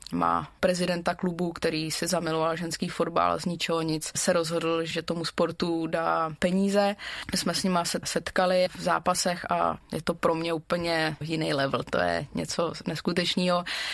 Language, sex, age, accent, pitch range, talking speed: Czech, female, 20-39, native, 160-180 Hz, 170 wpm